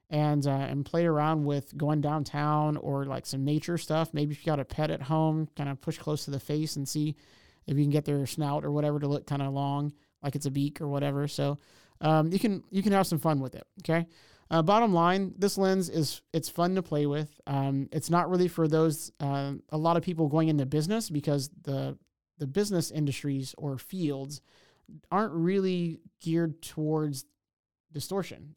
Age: 30-49